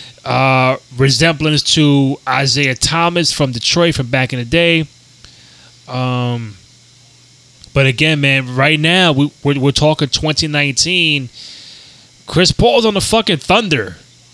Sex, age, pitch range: male, 20-39, 130-150 Hz